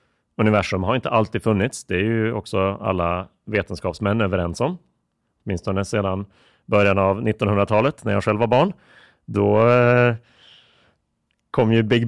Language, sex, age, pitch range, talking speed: Swedish, male, 30-49, 95-115 Hz, 135 wpm